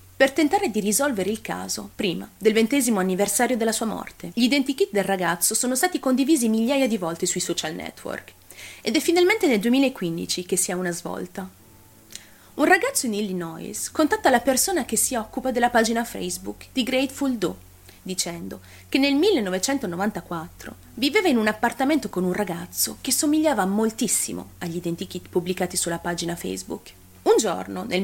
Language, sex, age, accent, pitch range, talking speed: Italian, female, 30-49, native, 170-260 Hz, 160 wpm